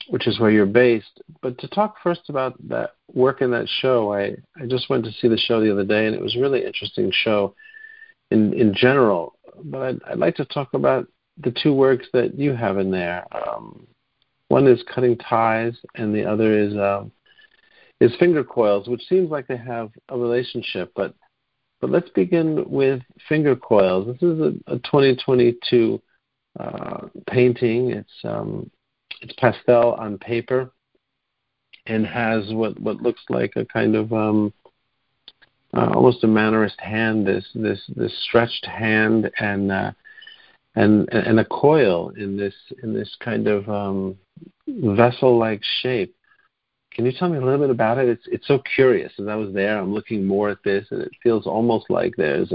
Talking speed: 175 wpm